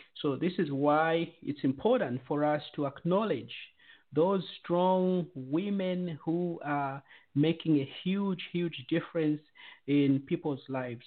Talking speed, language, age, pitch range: 125 wpm, English, 50-69, 140-180 Hz